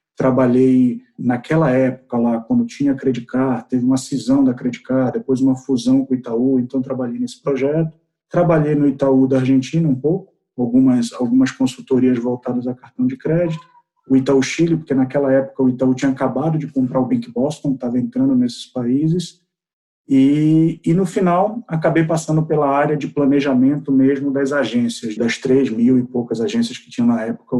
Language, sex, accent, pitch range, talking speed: Portuguese, male, Brazilian, 130-160 Hz, 170 wpm